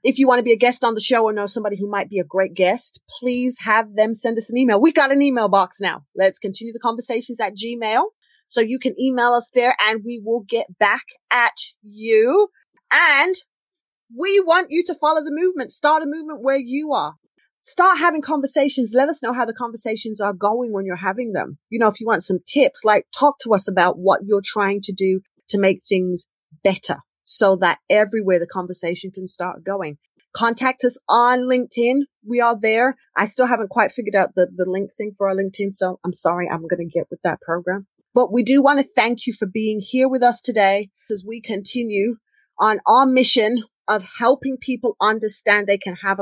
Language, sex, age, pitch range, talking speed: English, female, 30-49, 195-250 Hz, 215 wpm